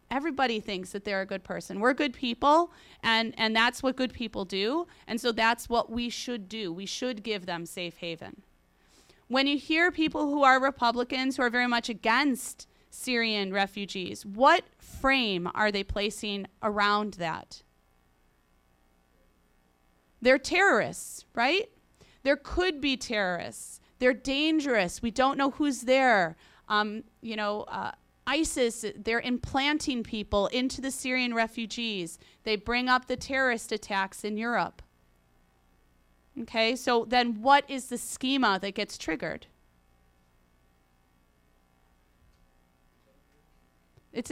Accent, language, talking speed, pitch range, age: American, English, 130 wpm, 165-255 Hz, 30-49